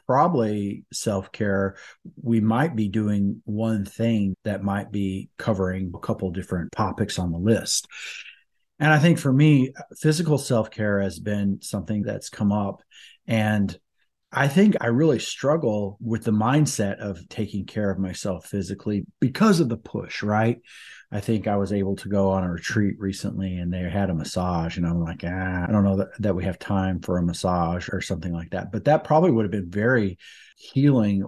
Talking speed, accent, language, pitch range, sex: 180 wpm, American, English, 95-120 Hz, male